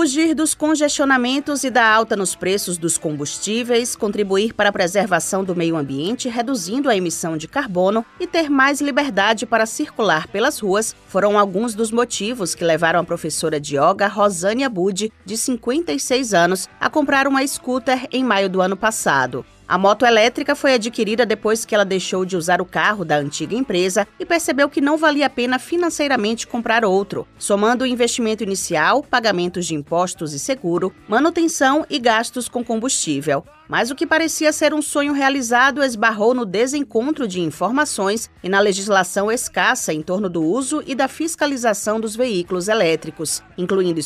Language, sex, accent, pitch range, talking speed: Portuguese, female, Brazilian, 190-270 Hz, 165 wpm